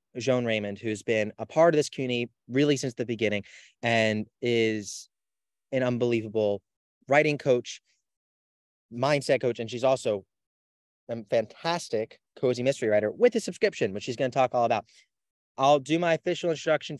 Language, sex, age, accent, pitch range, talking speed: English, male, 30-49, American, 105-135 Hz, 155 wpm